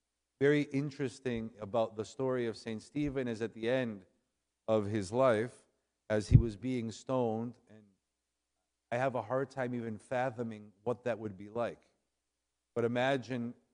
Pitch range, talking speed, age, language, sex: 100-125 Hz, 155 wpm, 50-69, English, male